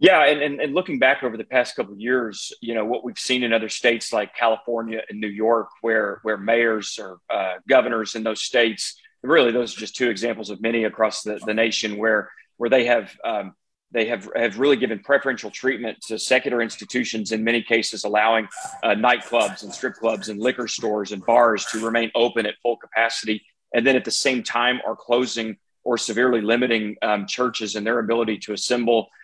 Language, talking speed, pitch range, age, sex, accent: English, 205 wpm, 110-130 Hz, 40-59, male, American